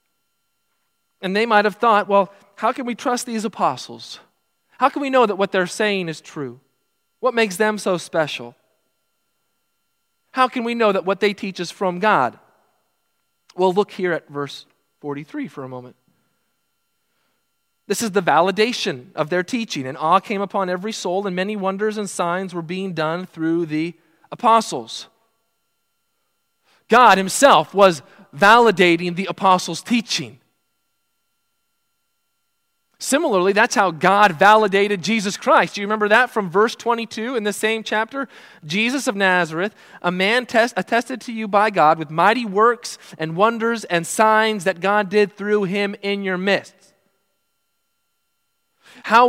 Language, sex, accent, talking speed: English, male, American, 150 wpm